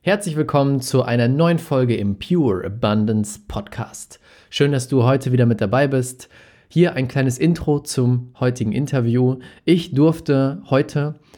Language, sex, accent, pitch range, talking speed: German, male, German, 115-145 Hz, 150 wpm